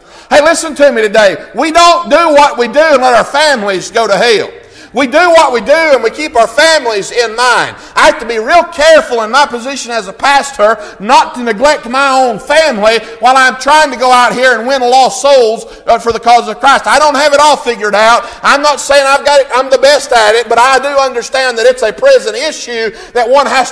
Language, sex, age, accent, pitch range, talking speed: English, male, 50-69, American, 235-300 Hz, 240 wpm